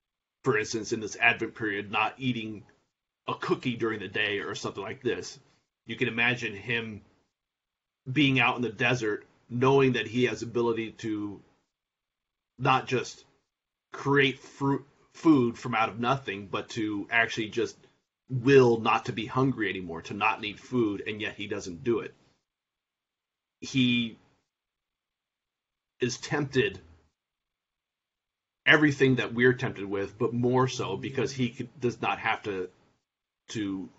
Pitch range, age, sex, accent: 110-130 Hz, 30-49, male, American